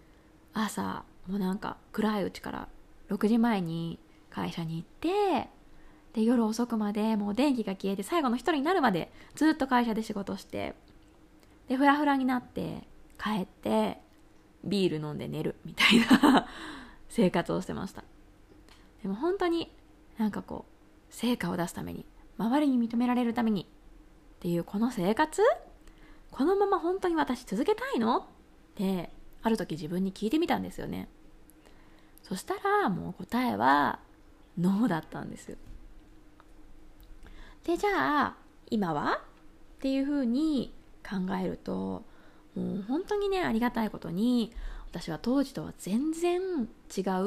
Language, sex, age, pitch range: Japanese, female, 20-39, 195-275 Hz